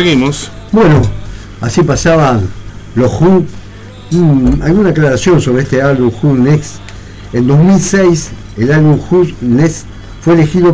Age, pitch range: 50-69, 110-160 Hz